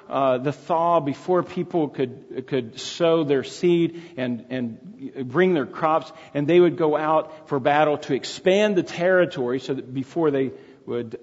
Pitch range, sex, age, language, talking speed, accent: 140-180 Hz, male, 40-59, English, 165 wpm, American